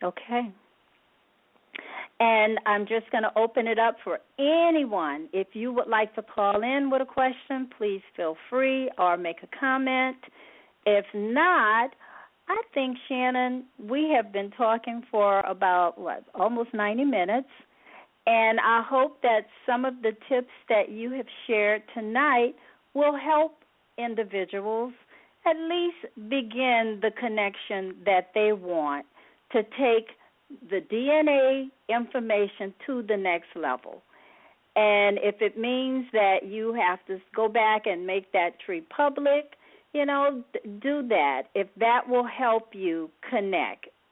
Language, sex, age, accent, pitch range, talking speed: English, female, 50-69, American, 205-260 Hz, 135 wpm